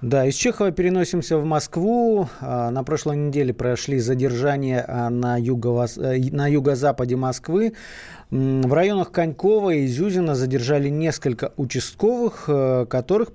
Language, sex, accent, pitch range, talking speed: Russian, male, native, 120-165 Hz, 105 wpm